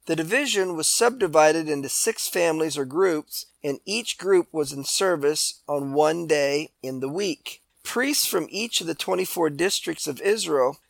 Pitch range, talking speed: 140-185 Hz, 165 wpm